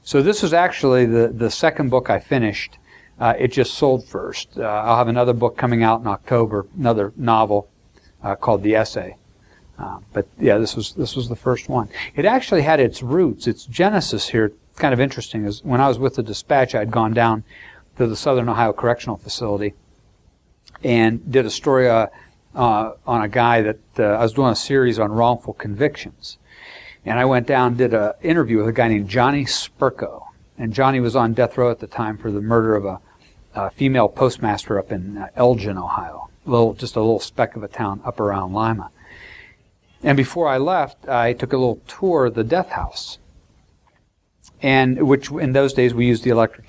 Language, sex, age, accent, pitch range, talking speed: English, male, 60-79, American, 105-130 Hz, 200 wpm